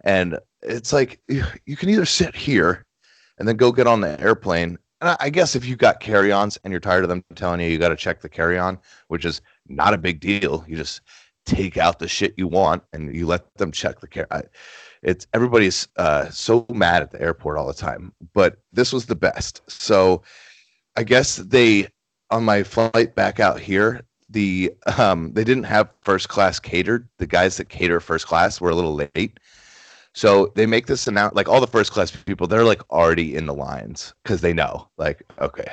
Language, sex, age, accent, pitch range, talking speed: English, male, 30-49, American, 95-125 Hz, 205 wpm